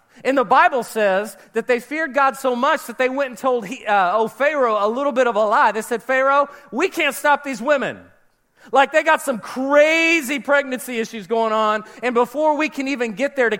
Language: English